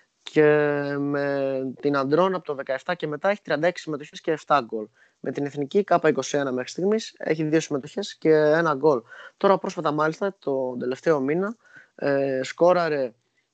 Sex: male